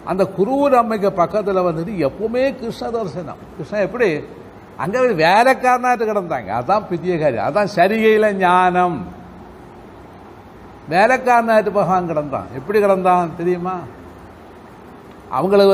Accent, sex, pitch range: native, male, 160-205 Hz